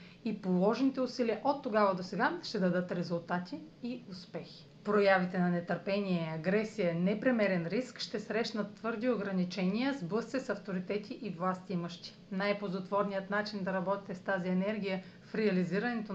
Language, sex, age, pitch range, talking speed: Bulgarian, female, 40-59, 185-225 Hz, 140 wpm